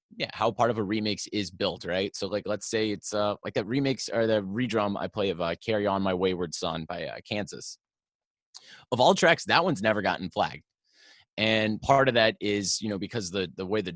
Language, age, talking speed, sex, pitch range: English, 20-39, 230 wpm, male, 95-120 Hz